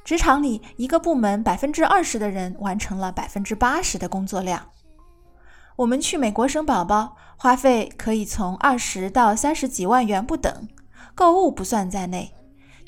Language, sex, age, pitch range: Chinese, female, 20-39, 195-280 Hz